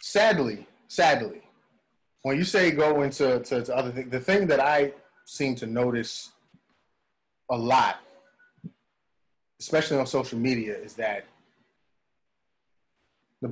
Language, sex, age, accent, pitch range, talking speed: English, male, 30-49, American, 125-150 Hz, 110 wpm